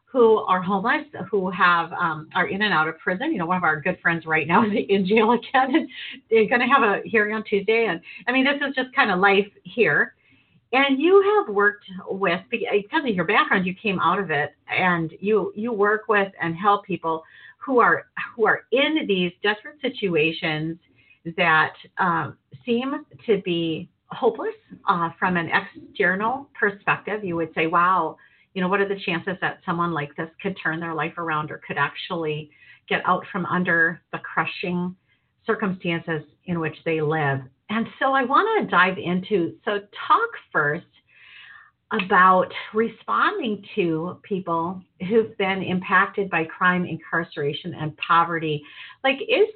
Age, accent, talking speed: 40-59, American, 170 wpm